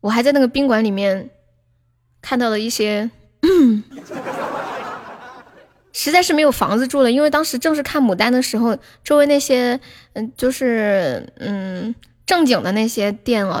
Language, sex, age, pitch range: Chinese, female, 10-29, 210-265 Hz